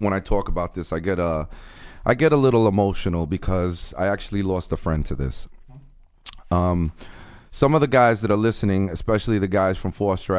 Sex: male